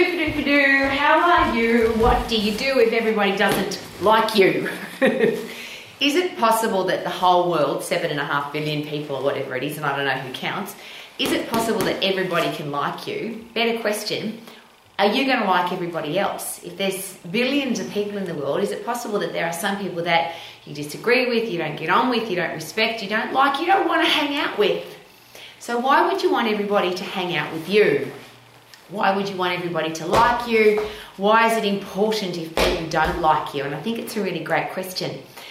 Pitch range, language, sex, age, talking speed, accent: 165-225 Hz, English, female, 30-49, 215 wpm, Australian